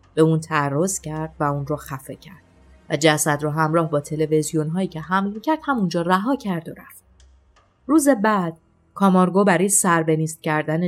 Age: 30-49